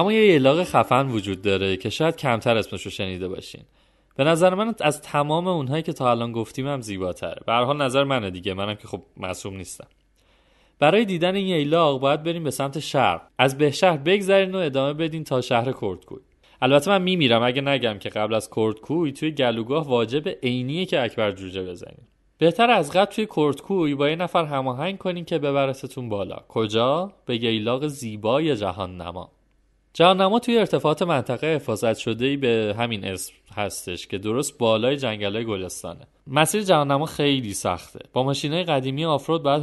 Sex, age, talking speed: male, 30-49, 170 wpm